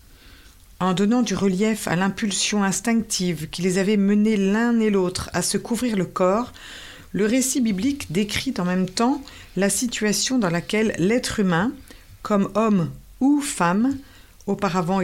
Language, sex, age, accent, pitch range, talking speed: French, female, 50-69, French, 175-220 Hz, 150 wpm